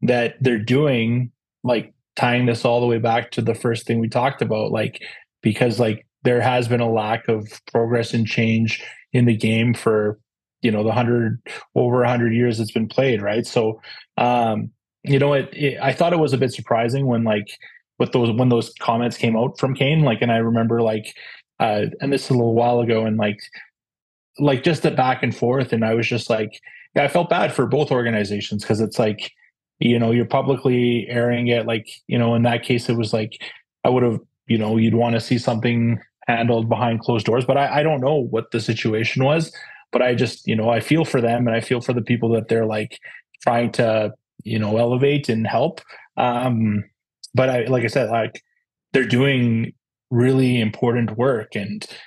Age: 20-39